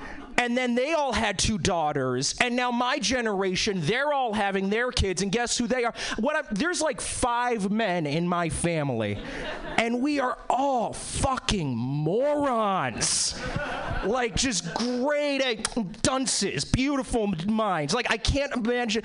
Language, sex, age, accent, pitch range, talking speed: English, male, 30-49, American, 200-270 Hz, 150 wpm